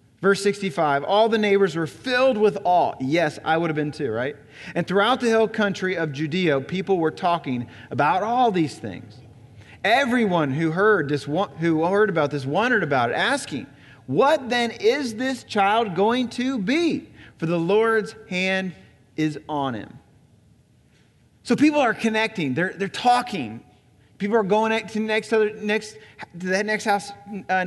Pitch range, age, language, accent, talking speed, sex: 180-280 Hz, 30-49, English, American, 165 wpm, male